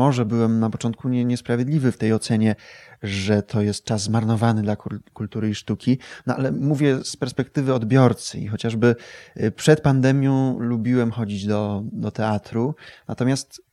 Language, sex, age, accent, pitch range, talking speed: Polish, male, 20-39, native, 110-130 Hz, 140 wpm